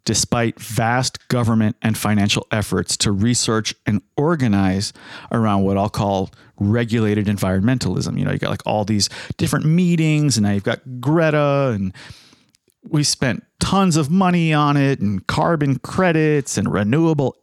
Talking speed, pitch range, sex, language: 150 wpm, 105-150 Hz, male, English